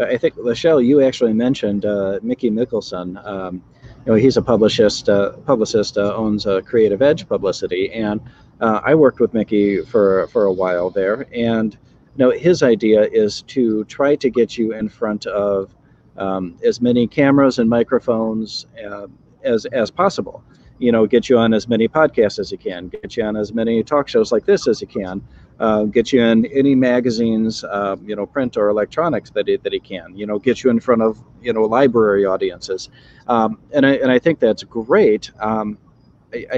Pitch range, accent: 105-135 Hz, American